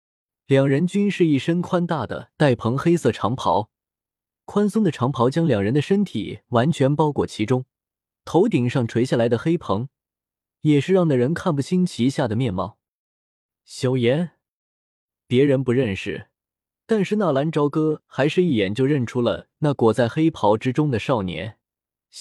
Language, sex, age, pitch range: Chinese, male, 20-39, 110-170 Hz